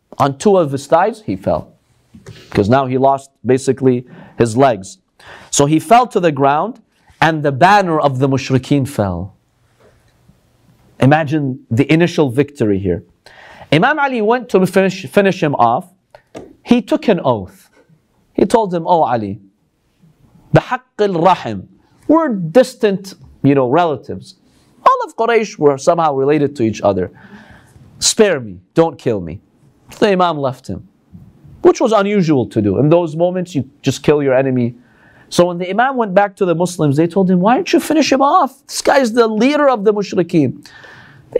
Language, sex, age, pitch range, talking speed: English, male, 40-59, 130-200 Hz, 165 wpm